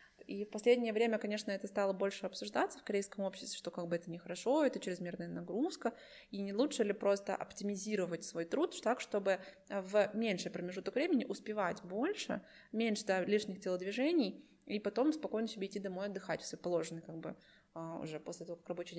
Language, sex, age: Russian, female, 20-39